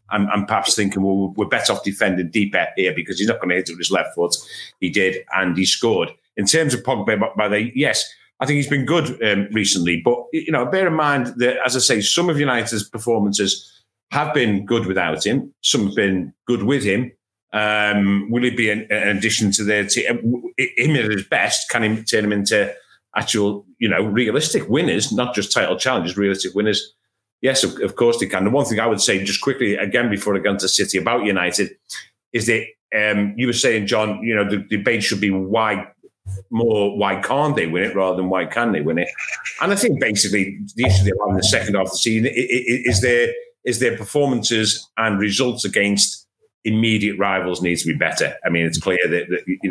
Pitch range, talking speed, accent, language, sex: 100-120 Hz, 220 wpm, British, English, male